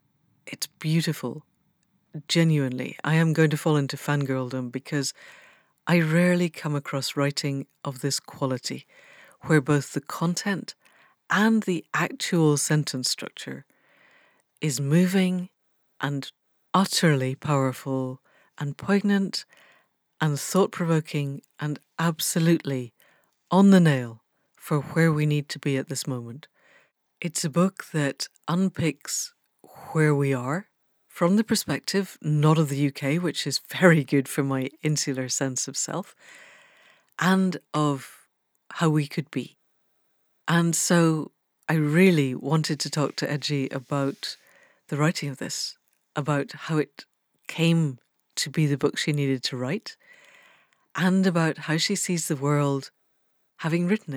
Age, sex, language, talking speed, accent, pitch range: 60-79, female, English, 130 wpm, British, 140-170 Hz